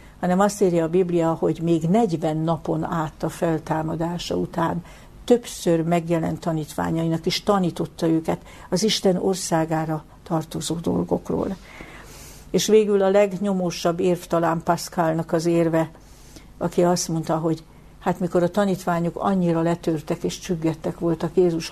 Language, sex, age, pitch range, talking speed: Hungarian, female, 60-79, 160-185 Hz, 125 wpm